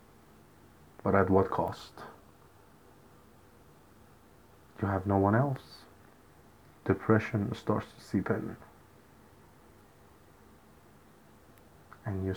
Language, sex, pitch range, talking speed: English, male, 105-130 Hz, 80 wpm